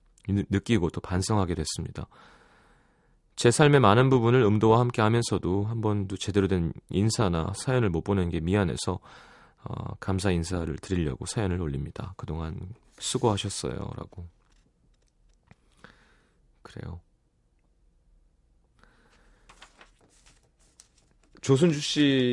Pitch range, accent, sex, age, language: 90-120 Hz, native, male, 30-49, Korean